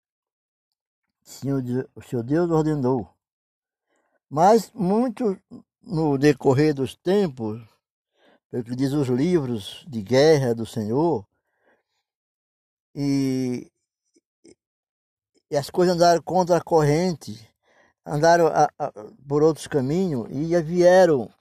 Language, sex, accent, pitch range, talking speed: Portuguese, male, Brazilian, 120-160 Hz, 95 wpm